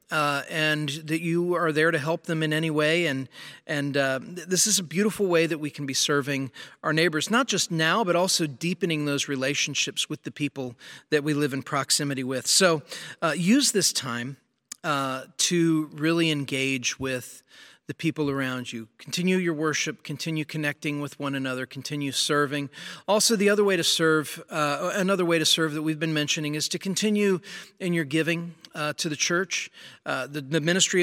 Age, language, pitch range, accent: 40-59, English, 145-175 Hz, American